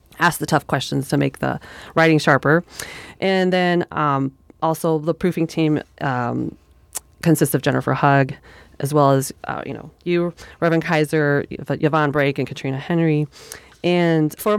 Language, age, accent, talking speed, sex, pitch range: English, 30-49, American, 150 wpm, female, 145-175 Hz